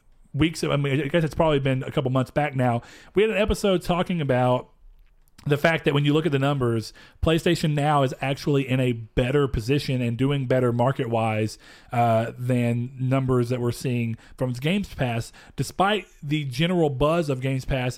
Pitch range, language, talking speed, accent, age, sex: 125-165 Hz, English, 185 wpm, American, 40-59, male